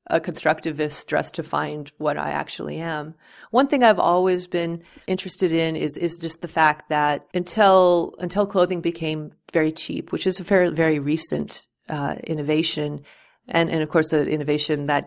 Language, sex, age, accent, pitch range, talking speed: English, female, 30-49, American, 155-180 Hz, 170 wpm